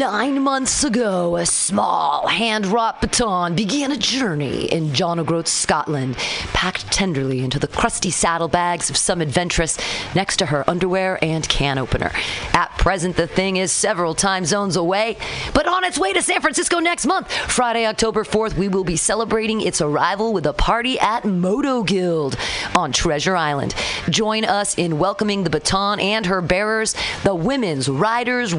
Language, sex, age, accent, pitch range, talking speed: English, female, 40-59, American, 170-230 Hz, 165 wpm